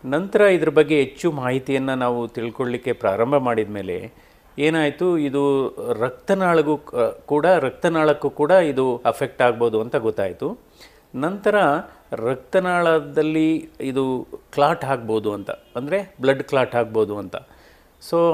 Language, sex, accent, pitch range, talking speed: Kannada, male, native, 130-170 Hz, 110 wpm